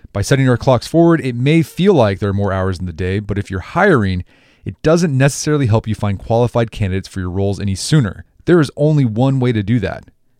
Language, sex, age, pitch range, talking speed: English, male, 30-49, 105-155 Hz, 235 wpm